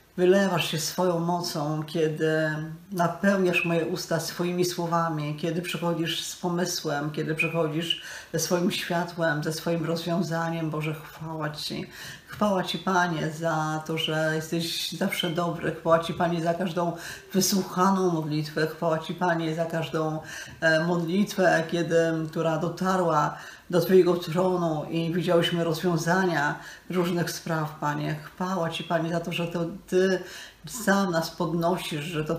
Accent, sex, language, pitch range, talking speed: native, female, Polish, 160-180 Hz, 135 wpm